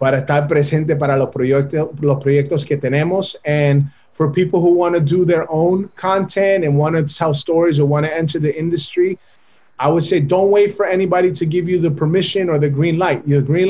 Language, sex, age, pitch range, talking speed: Spanish, male, 30-49, 145-180 Hz, 210 wpm